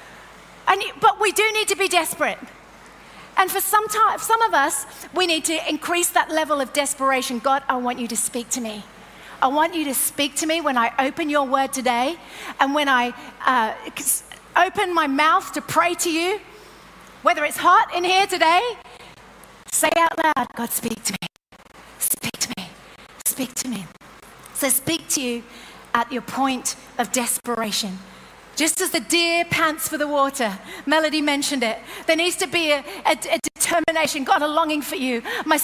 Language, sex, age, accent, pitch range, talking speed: English, female, 40-59, British, 260-340 Hz, 180 wpm